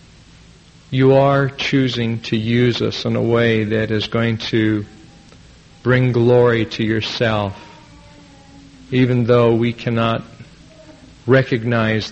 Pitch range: 110-125 Hz